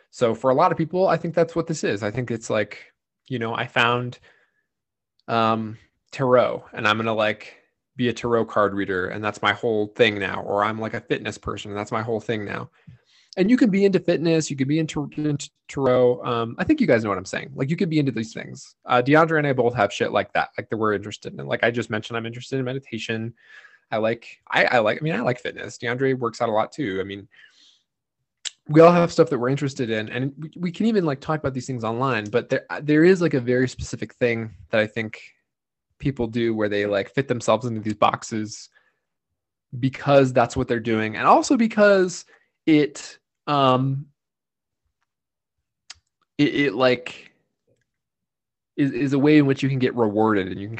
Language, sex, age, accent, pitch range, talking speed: English, male, 20-39, American, 110-145 Hz, 215 wpm